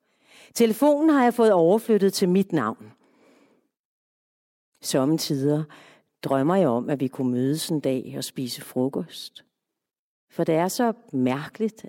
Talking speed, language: 130 wpm, English